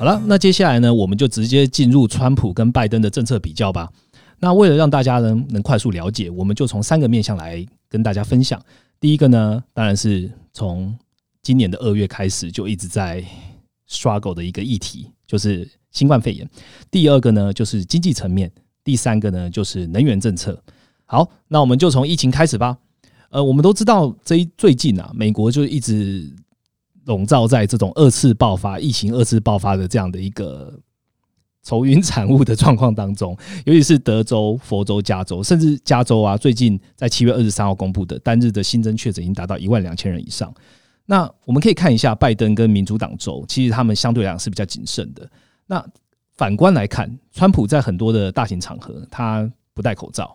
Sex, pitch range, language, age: male, 100-130 Hz, Chinese, 30-49